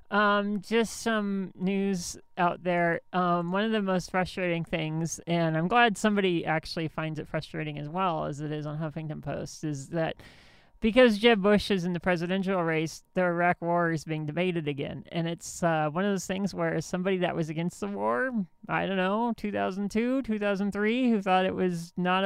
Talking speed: 190 wpm